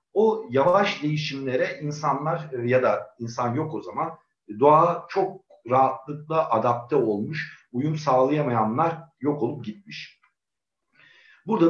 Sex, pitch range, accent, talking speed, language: male, 120-160 Hz, native, 110 wpm, Turkish